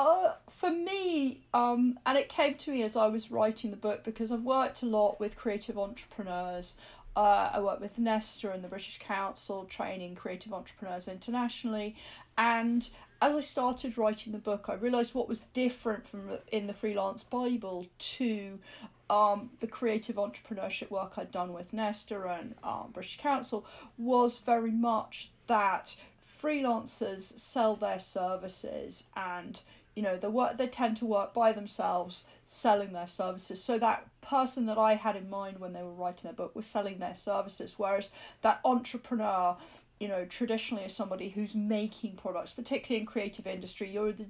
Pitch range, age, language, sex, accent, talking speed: 195-230 Hz, 40-59, English, female, British, 170 wpm